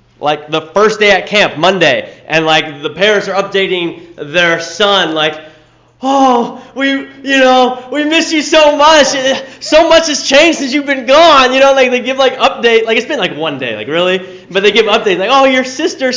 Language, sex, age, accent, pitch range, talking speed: English, male, 20-39, American, 160-255 Hz, 210 wpm